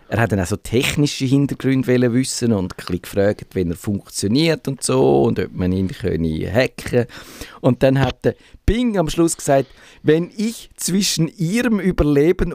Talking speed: 165 wpm